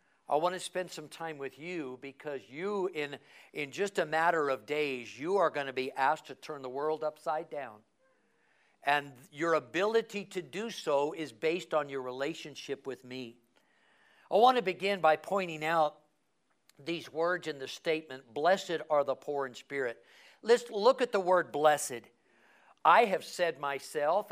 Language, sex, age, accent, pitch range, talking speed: English, male, 50-69, American, 145-200 Hz, 175 wpm